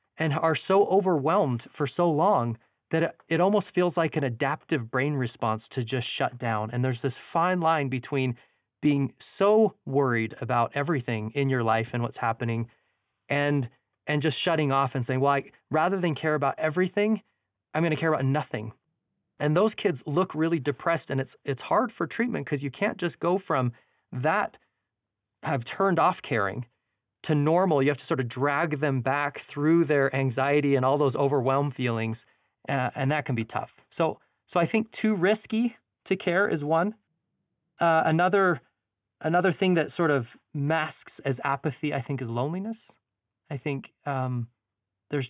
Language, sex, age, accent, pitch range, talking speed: English, male, 30-49, American, 125-165 Hz, 175 wpm